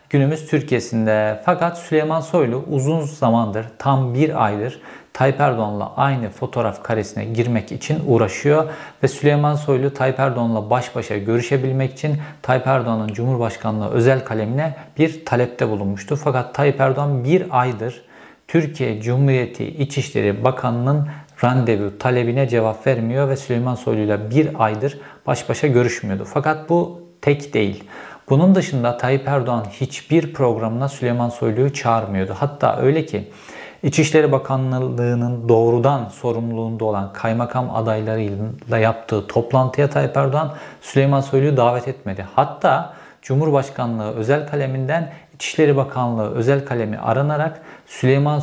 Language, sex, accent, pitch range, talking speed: Turkish, male, native, 115-140 Hz, 120 wpm